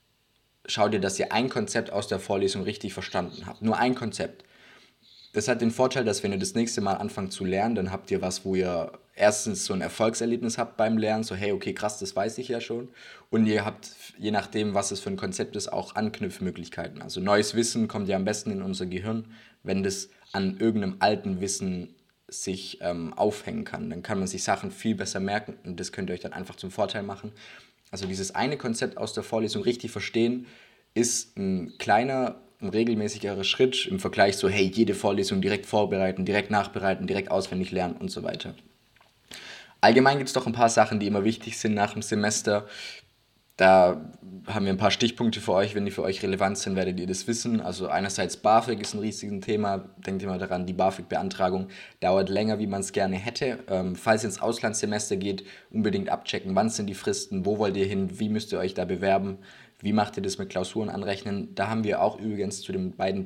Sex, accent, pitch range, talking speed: male, German, 95-115 Hz, 210 wpm